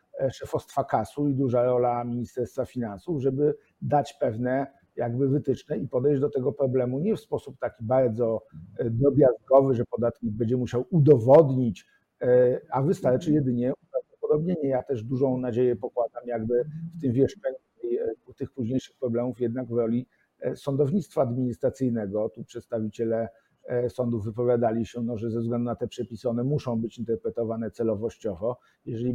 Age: 50-69